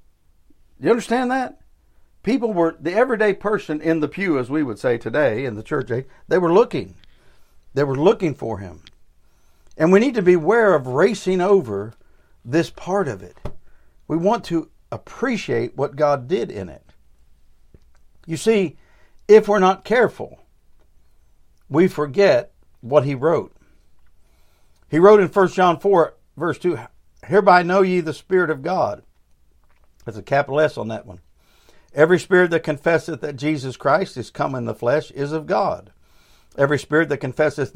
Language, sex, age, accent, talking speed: English, male, 60-79, American, 160 wpm